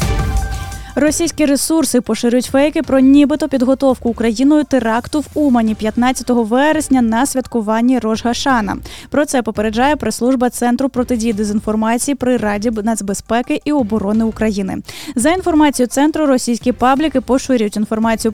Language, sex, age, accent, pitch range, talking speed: Ukrainian, female, 10-29, native, 225-275 Hz, 120 wpm